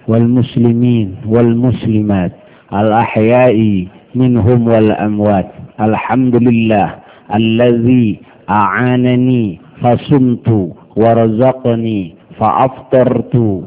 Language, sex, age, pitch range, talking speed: Indonesian, male, 50-69, 105-125 Hz, 55 wpm